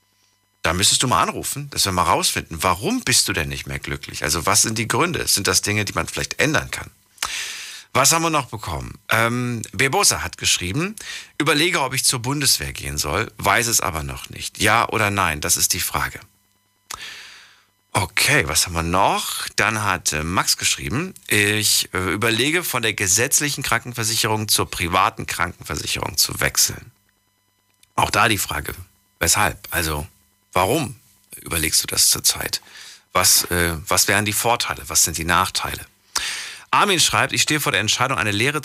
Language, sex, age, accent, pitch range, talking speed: German, male, 50-69, German, 95-120 Hz, 165 wpm